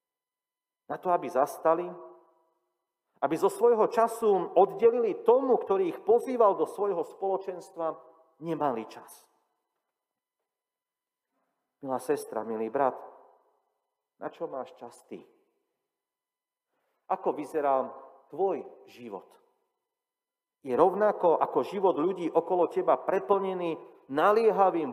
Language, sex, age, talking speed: Slovak, male, 40-59, 95 wpm